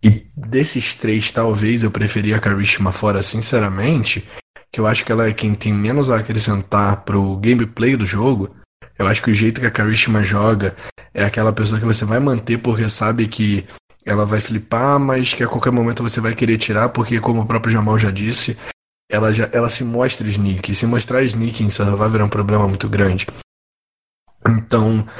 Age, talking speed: 20-39, 190 wpm